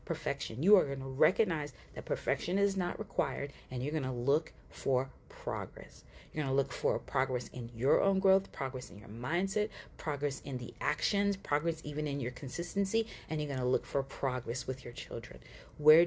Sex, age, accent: female, 40-59, American